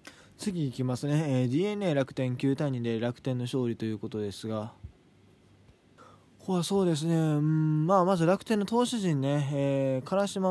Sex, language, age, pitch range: male, Japanese, 20-39, 125-170 Hz